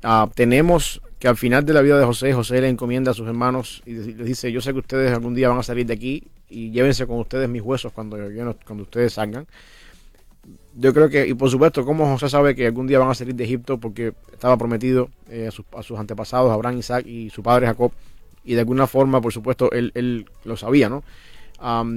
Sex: male